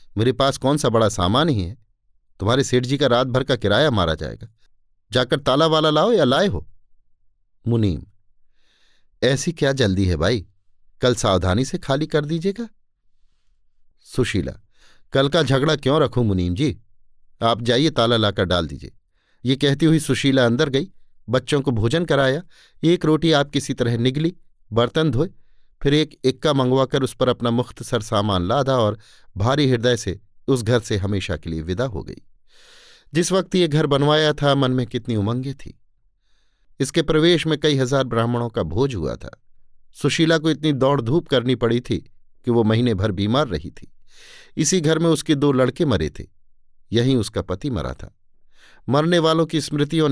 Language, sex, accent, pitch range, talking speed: Hindi, male, native, 100-150 Hz, 175 wpm